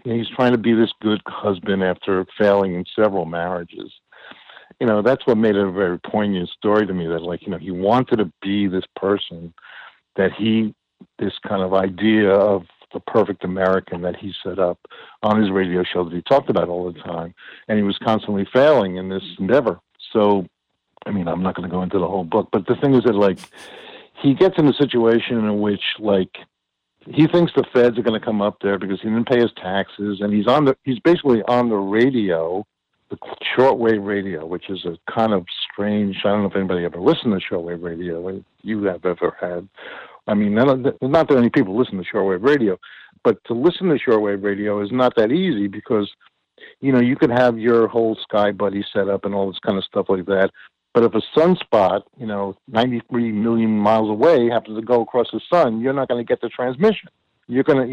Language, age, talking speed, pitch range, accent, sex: English, 60-79, 215 wpm, 95-120 Hz, American, male